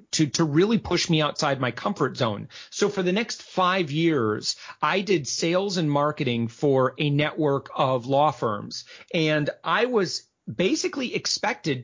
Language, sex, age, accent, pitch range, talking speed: English, male, 40-59, American, 140-185 Hz, 155 wpm